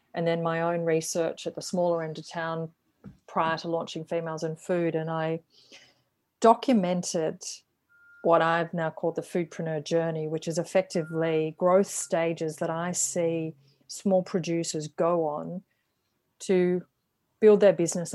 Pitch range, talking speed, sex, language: 160-190 Hz, 140 wpm, female, English